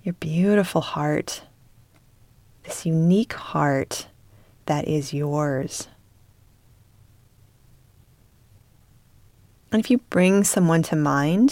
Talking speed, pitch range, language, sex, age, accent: 85 wpm, 110-160 Hz, English, female, 20-39, American